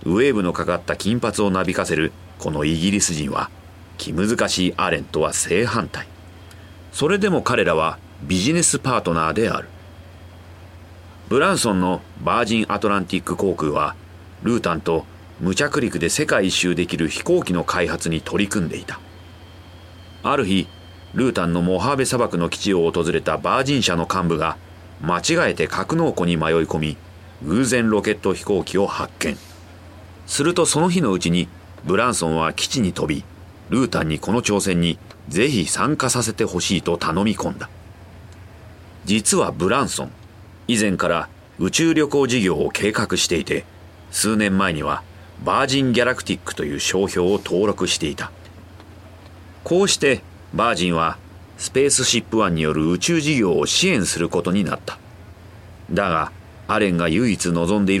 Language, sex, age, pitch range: Japanese, male, 40-59, 85-105 Hz